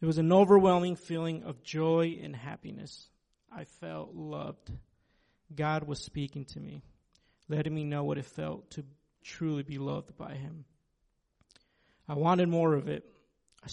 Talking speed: 155 wpm